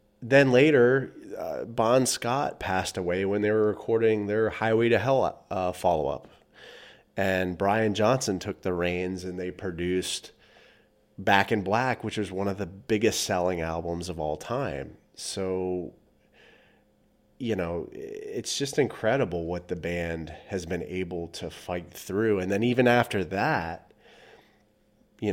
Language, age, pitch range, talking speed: English, 30-49, 85-105 Hz, 145 wpm